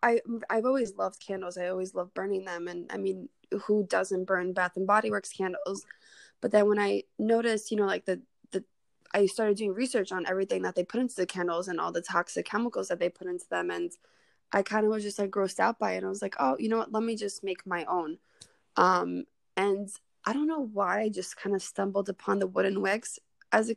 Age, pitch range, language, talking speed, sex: 20-39, 180-220 Hz, English, 235 wpm, female